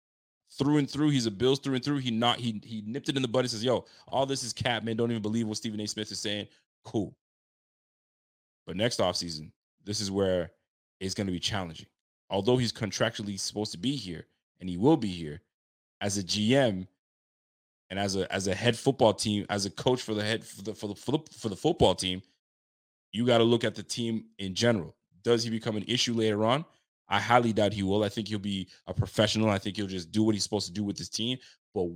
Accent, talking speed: American, 235 wpm